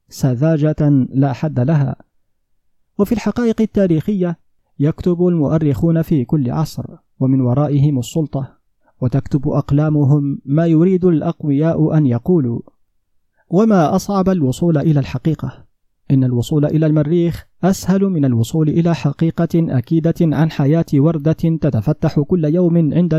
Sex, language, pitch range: male, Arabic, 140-170 Hz